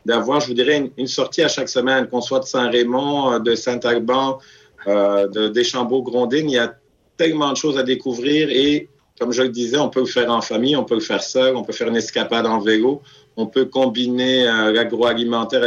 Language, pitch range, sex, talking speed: French, 115-130 Hz, male, 215 wpm